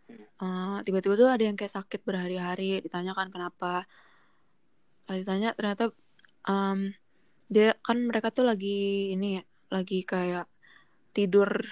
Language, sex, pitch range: Indonesian, female, 185-210 Hz